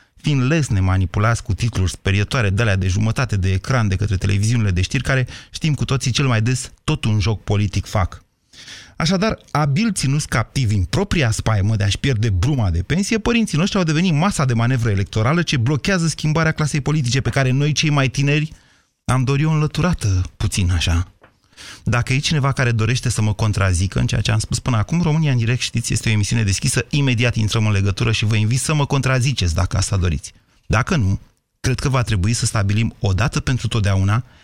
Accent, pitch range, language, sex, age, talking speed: native, 105-140 Hz, Romanian, male, 30-49, 200 wpm